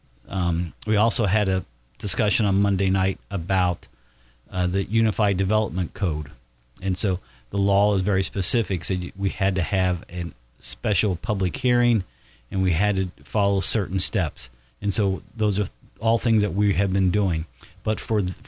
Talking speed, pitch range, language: 170 wpm, 90-105 Hz, English